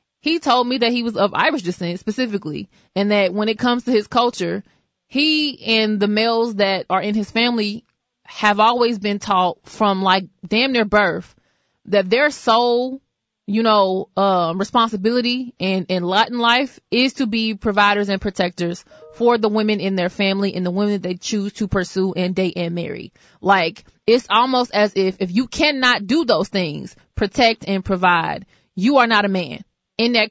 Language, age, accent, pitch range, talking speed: English, 20-39, American, 195-235 Hz, 185 wpm